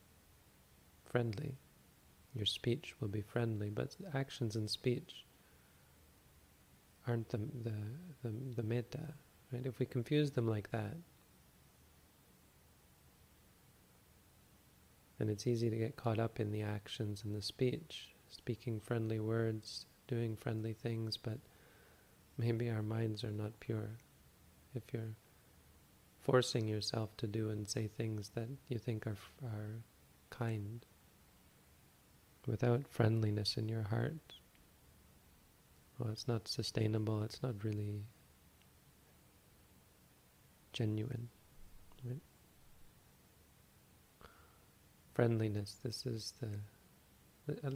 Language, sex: English, male